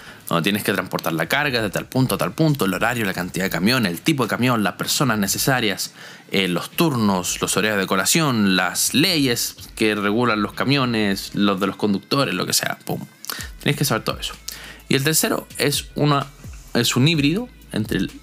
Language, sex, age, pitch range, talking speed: Spanish, male, 20-39, 95-155 Hz, 200 wpm